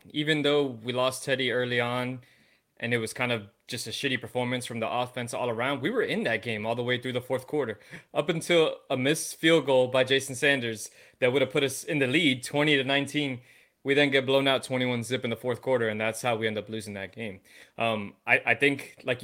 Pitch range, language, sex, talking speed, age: 120-140 Hz, English, male, 245 wpm, 20-39